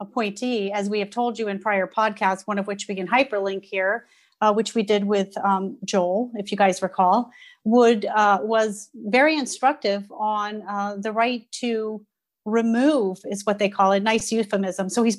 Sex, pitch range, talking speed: female, 200-235 Hz, 185 wpm